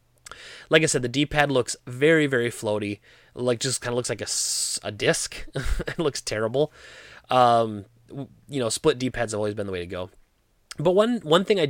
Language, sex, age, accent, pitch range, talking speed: English, male, 20-39, American, 105-140 Hz, 195 wpm